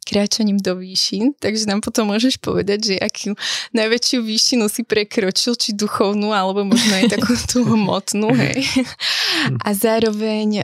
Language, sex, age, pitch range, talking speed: Slovak, female, 20-39, 195-220 Hz, 135 wpm